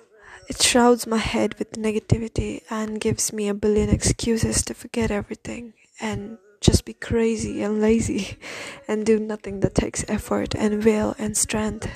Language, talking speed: English, 155 wpm